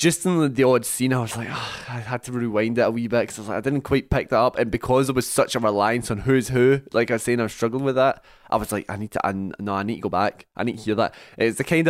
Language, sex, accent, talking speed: English, male, British, 335 wpm